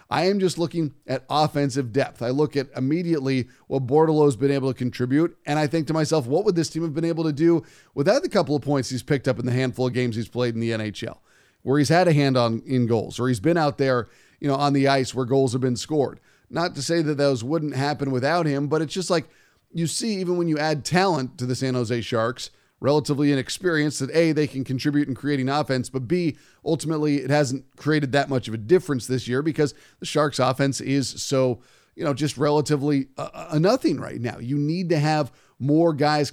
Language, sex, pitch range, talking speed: English, male, 130-155 Hz, 235 wpm